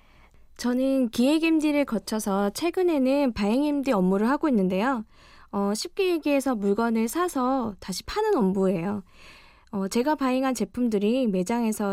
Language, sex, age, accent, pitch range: Korean, female, 20-39, native, 200-270 Hz